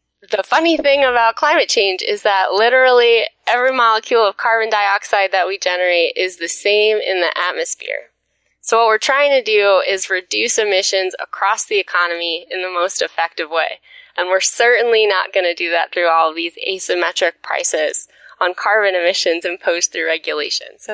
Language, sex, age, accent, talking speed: English, female, 20-39, American, 175 wpm